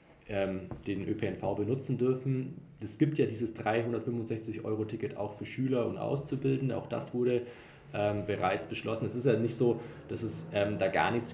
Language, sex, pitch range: German, male, 105-130 Hz